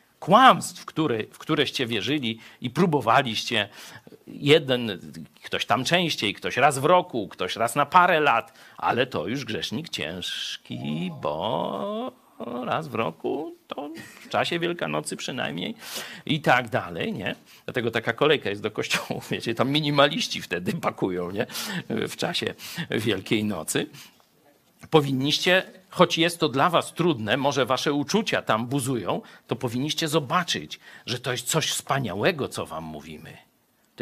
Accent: native